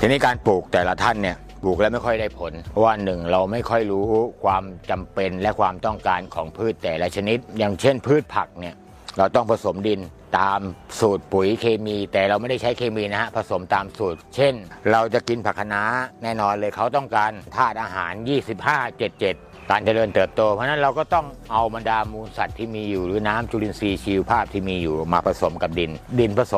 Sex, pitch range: male, 95-120 Hz